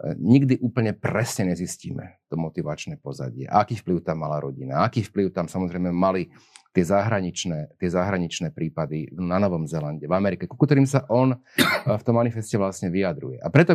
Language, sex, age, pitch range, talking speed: Slovak, male, 40-59, 85-105 Hz, 165 wpm